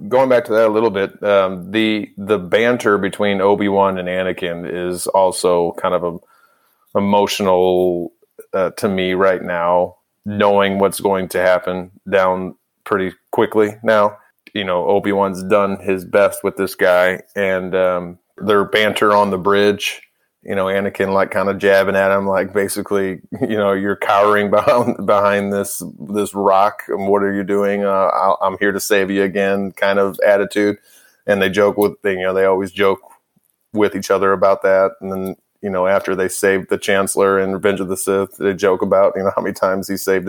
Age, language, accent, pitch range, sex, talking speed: 30-49, English, American, 95-100 Hz, male, 190 wpm